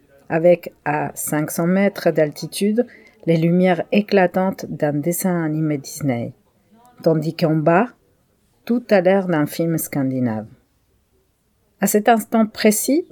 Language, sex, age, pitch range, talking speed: French, female, 40-59, 150-190 Hz, 115 wpm